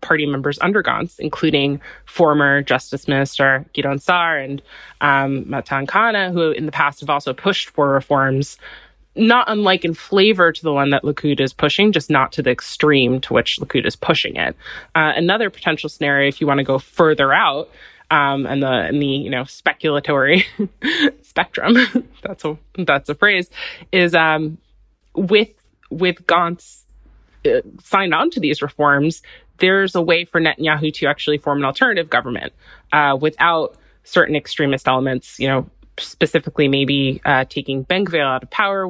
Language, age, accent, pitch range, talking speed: English, 20-39, American, 135-170 Hz, 165 wpm